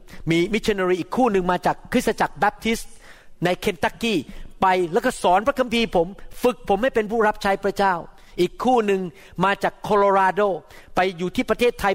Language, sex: Thai, male